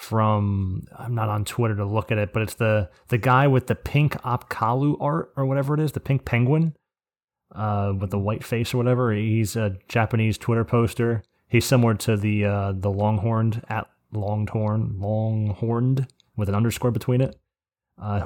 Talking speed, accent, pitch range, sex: 180 wpm, American, 105-120 Hz, male